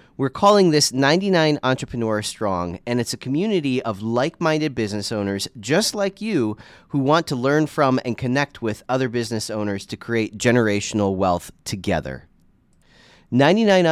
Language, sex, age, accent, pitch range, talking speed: English, male, 30-49, American, 105-140 Hz, 145 wpm